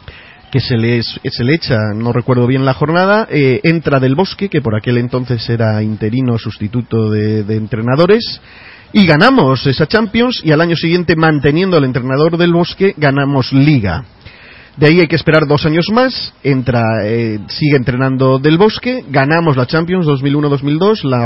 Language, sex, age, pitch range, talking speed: Spanish, male, 40-59, 125-165 Hz, 165 wpm